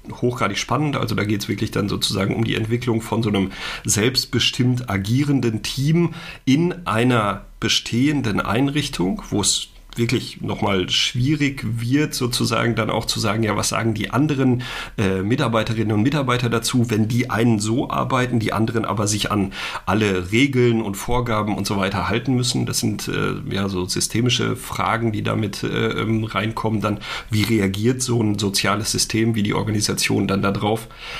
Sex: male